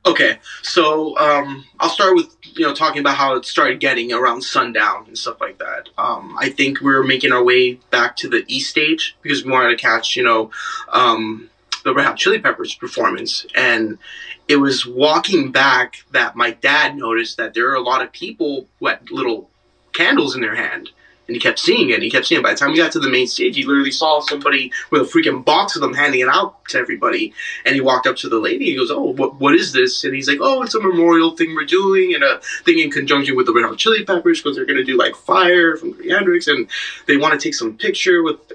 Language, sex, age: English, male, 20-39